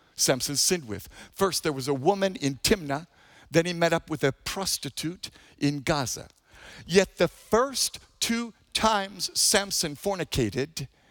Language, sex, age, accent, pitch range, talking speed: English, male, 50-69, American, 175-250 Hz, 140 wpm